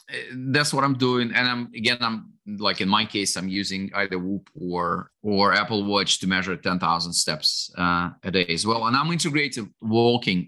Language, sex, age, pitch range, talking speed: English, male, 30-49, 100-120 Hz, 190 wpm